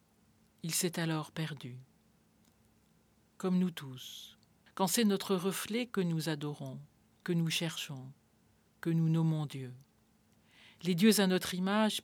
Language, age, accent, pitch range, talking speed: French, 50-69, French, 145-195 Hz, 130 wpm